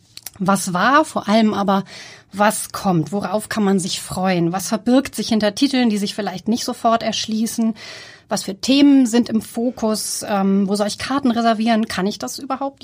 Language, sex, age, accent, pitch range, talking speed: German, female, 30-49, German, 190-245 Hz, 180 wpm